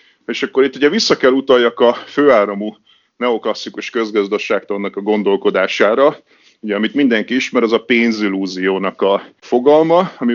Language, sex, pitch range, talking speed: Hungarian, male, 105-145 Hz, 135 wpm